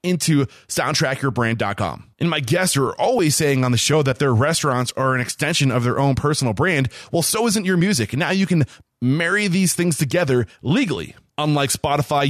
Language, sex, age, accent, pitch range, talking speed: English, male, 20-39, American, 130-175 Hz, 180 wpm